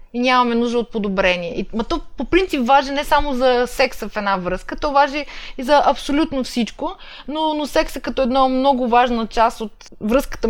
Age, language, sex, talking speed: 20-39, Bulgarian, female, 185 wpm